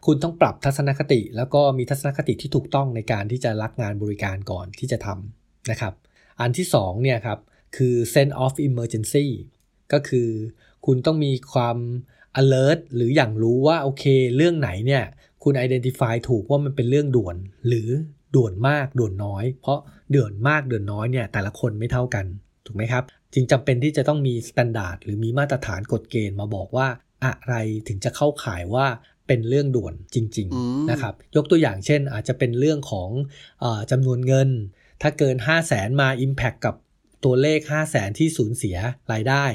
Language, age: Thai, 20-39